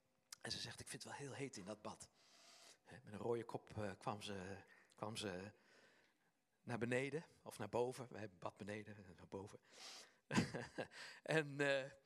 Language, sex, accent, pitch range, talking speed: Dutch, male, Dutch, 115-175 Hz, 170 wpm